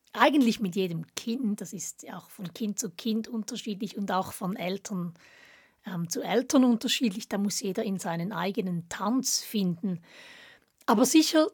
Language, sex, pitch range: German, female, 195-245 Hz